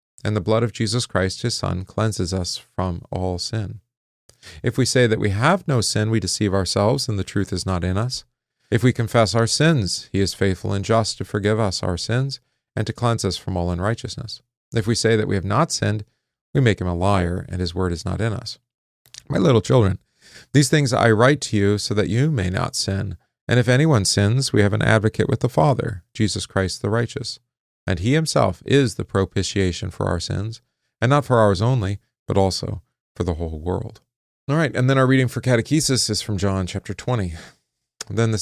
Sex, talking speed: male, 215 wpm